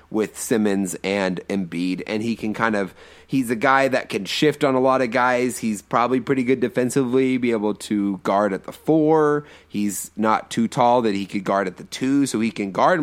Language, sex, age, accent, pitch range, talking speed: English, male, 30-49, American, 105-135 Hz, 215 wpm